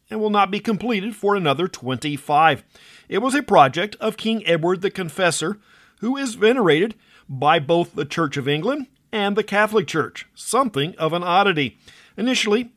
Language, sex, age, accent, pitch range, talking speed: English, male, 50-69, American, 160-220 Hz, 165 wpm